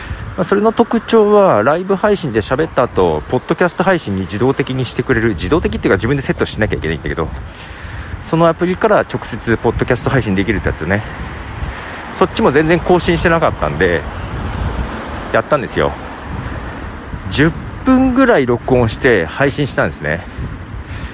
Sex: male